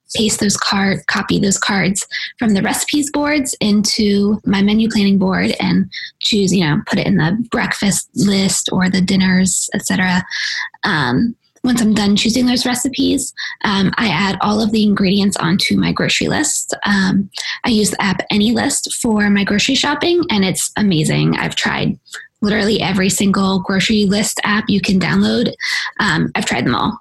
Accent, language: American, English